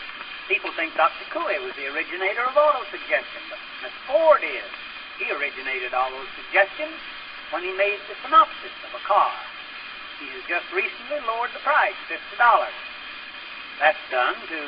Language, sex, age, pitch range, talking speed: English, male, 60-79, 190-255 Hz, 155 wpm